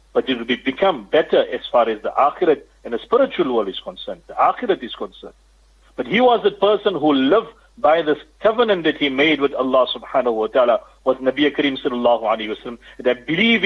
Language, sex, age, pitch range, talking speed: English, male, 50-69, 120-190 Hz, 210 wpm